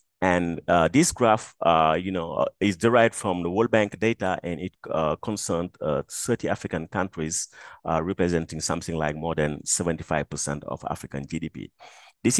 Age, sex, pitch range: 30-49, male, 85-110 Hz